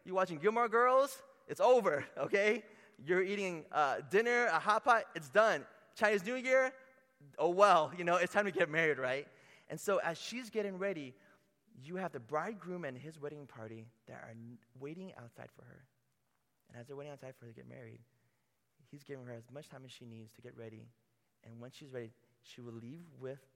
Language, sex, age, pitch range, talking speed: English, male, 20-39, 115-170 Hz, 200 wpm